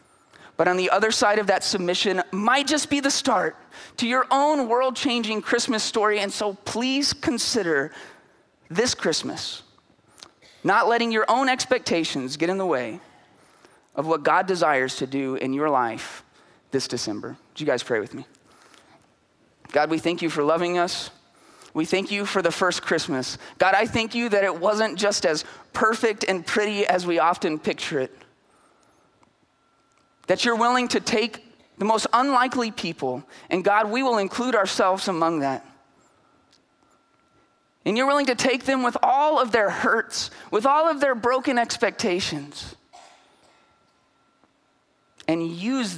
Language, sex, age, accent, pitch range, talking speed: English, male, 20-39, American, 165-235 Hz, 155 wpm